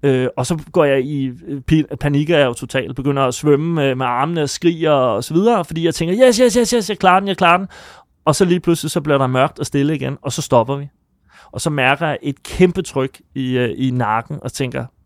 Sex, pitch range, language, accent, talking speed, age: male, 130-170 Hz, Danish, native, 225 wpm, 30-49